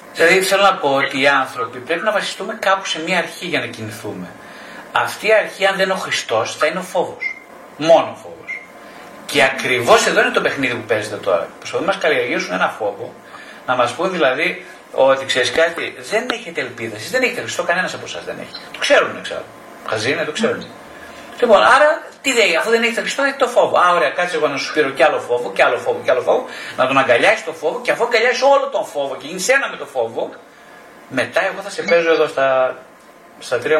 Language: Greek